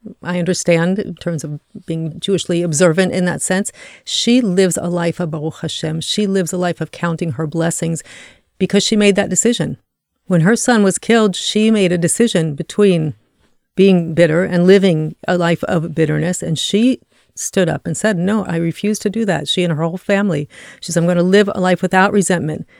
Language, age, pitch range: English, 40-59, 170-195 Hz